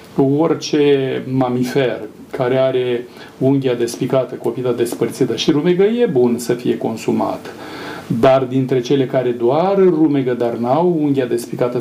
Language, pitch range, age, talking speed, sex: Romanian, 125-150 Hz, 40-59, 130 wpm, male